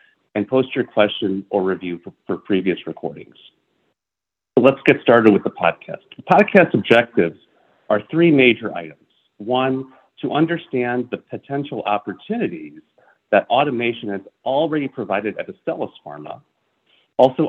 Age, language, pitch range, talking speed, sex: 40-59, English, 105-145 Hz, 135 wpm, male